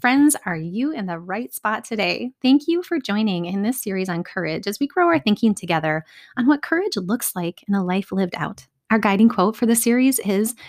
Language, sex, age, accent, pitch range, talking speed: English, female, 30-49, American, 170-220 Hz, 225 wpm